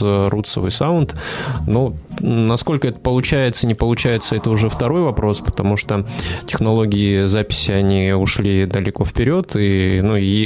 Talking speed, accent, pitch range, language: 125 wpm, native, 100-115 Hz, Russian